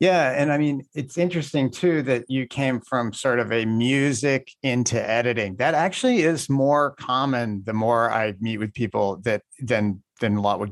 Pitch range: 105-130 Hz